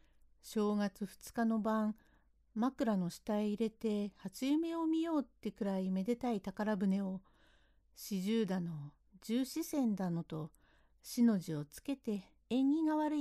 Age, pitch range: 60-79, 180-245 Hz